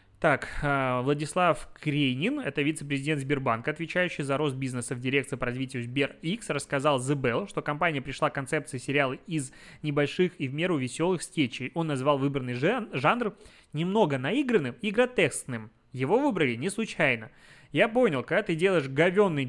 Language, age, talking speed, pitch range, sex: Russian, 20-39, 150 wpm, 135-180 Hz, male